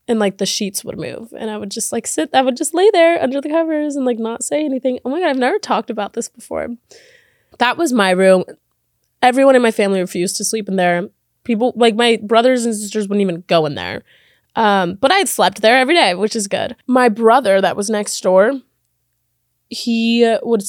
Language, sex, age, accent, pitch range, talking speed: English, female, 20-39, American, 195-245 Hz, 225 wpm